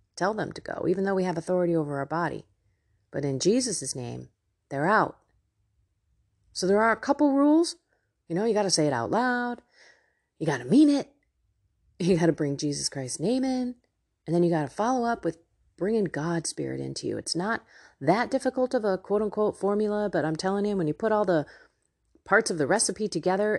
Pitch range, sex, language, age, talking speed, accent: 145-210 Hz, female, English, 30-49, 210 wpm, American